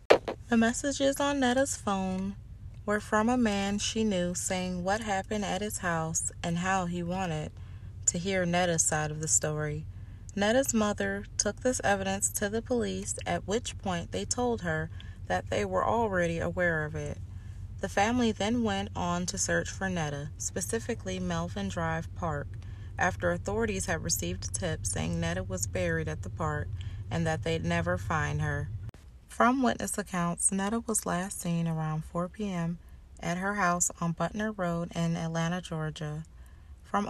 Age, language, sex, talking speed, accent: 20-39, English, female, 160 wpm, American